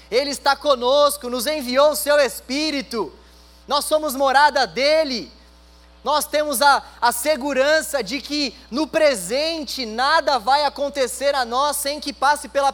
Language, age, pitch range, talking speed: Portuguese, 20-39, 230-290 Hz, 140 wpm